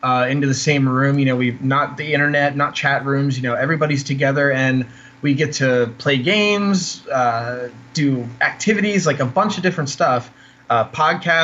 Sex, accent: male, American